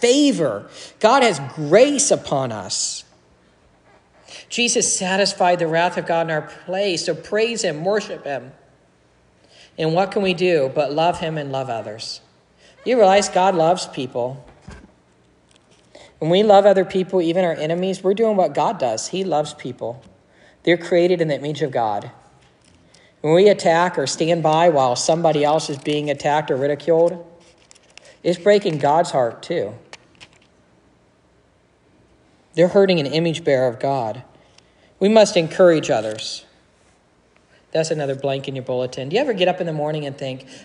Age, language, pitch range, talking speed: 50-69, English, 135-185 Hz, 155 wpm